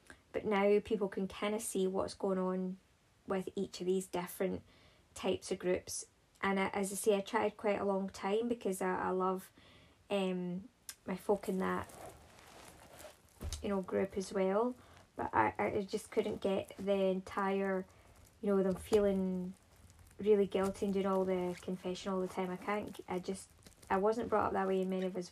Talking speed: 185 wpm